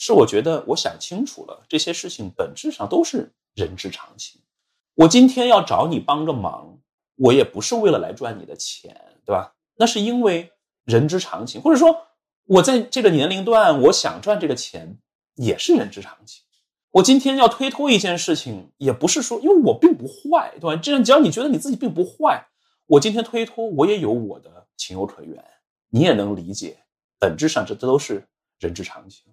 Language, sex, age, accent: Chinese, male, 30-49, native